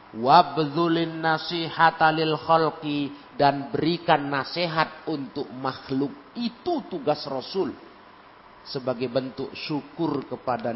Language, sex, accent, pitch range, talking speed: Indonesian, male, native, 120-165 Hz, 85 wpm